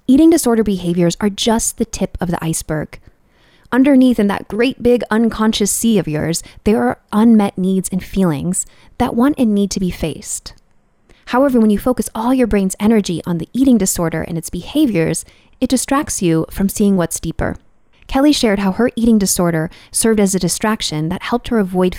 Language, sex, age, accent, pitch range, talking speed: English, female, 20-39, American, 170-225 Hz, 185 wpm